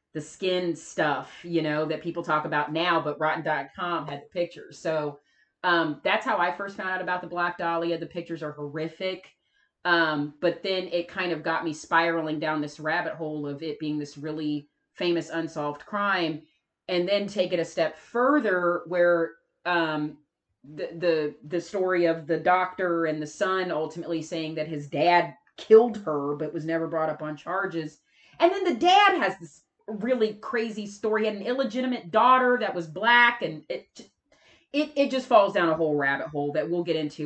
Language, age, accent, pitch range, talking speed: English, 30-49, American, 155-190 Hz, 190 wpm